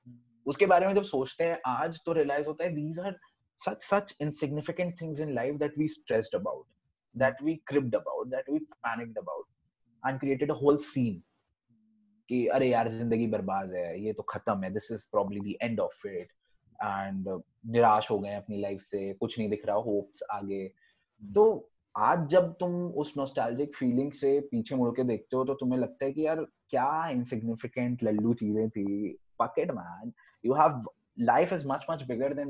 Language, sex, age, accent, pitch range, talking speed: Hindi, male, 20-39, native, 110-150 Hz, 120 wpm